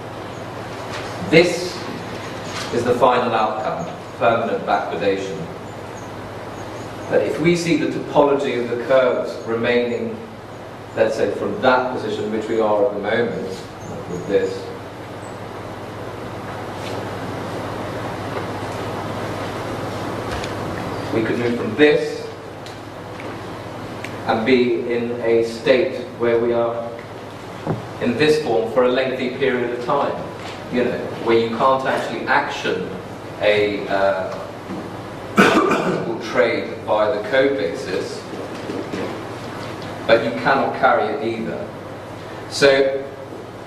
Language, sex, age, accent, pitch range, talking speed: English, male, 40-59, British, 105-130 Hz, 100 wpm